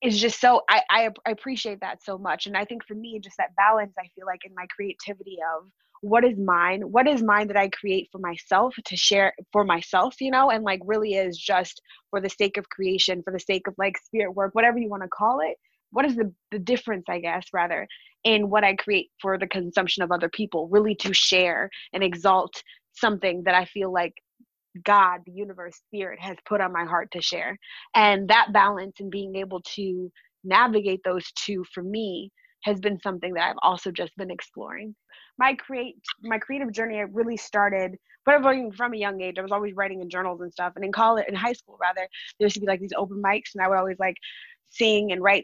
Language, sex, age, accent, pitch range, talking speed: English, female, 20-39, American, 190-240 Hz, 220 wpm